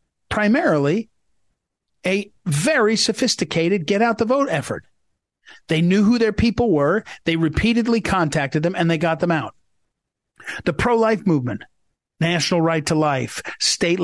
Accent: American